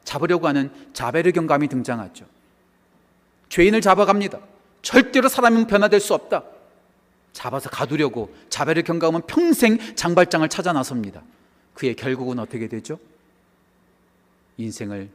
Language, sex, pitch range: Korean, male, 125-200 Hz